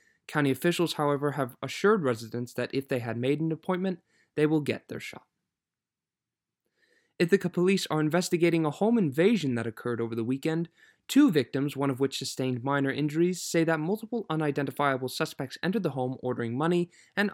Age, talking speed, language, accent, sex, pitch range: 20-39, 170 wpm, English, American, male, 125-165 Hz